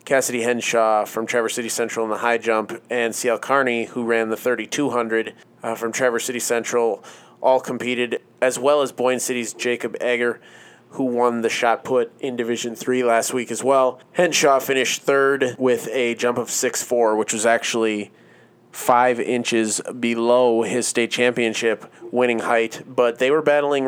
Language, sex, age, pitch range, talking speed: English, male, 30-49, 115-125 Hz, 165 wpm